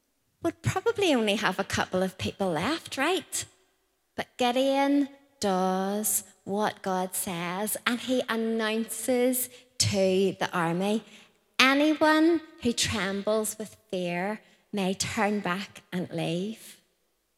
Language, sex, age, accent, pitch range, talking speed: English, female, 30-49, British, 185-230 Hz, 110 wpm